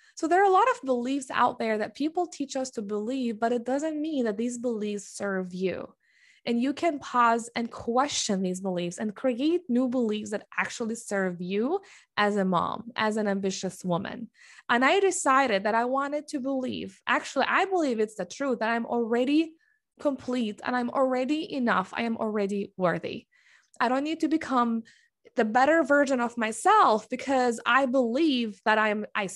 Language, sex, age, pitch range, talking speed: English, female, 20-39, 215-285 Hz, 180 wpm